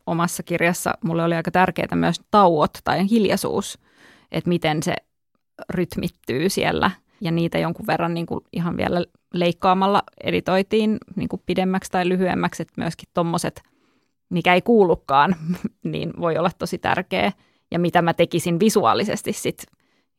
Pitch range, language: 170-185 Hz, Finnish